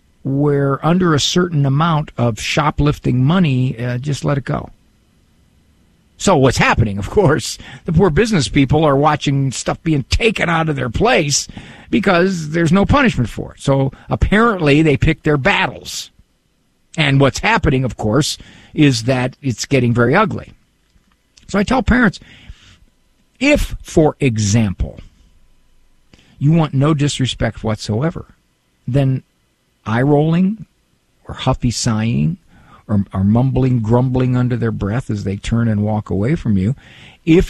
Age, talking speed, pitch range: 50-69, 140 wpm, 115-165 Hz